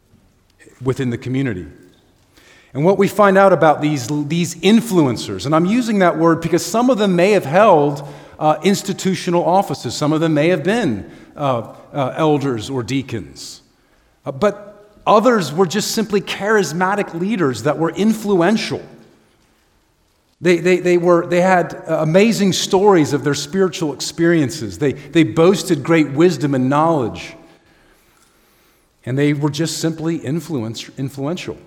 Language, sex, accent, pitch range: English, male, American, 125-180 Hz